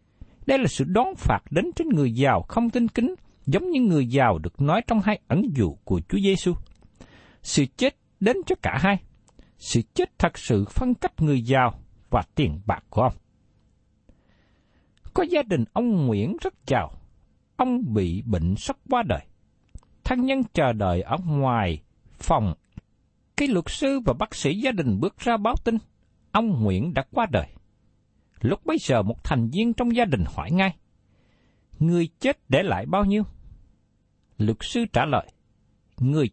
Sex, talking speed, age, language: male, 170 wpm, 60-79, Vietnamese